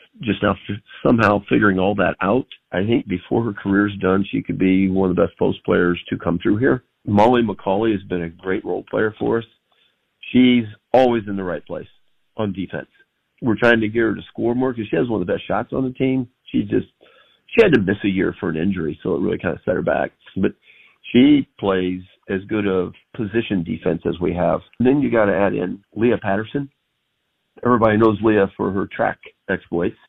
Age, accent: 50-69, American